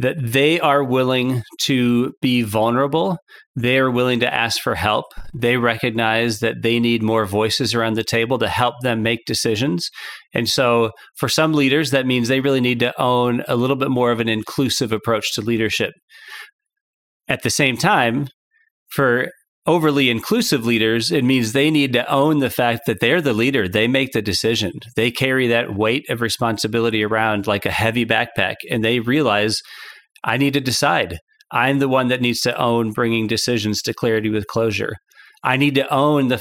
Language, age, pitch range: English, 40-59, 115-140 Hz